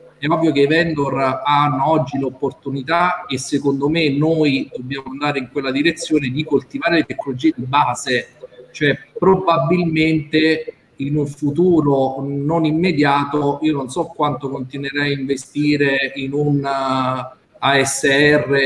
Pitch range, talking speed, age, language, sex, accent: 135-160 Hz, 130 wpm, 40-59, Italian, male, native